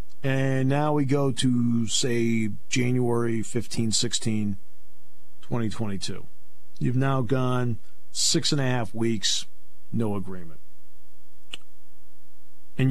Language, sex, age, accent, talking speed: English, male, 50-69, American, 100 wpm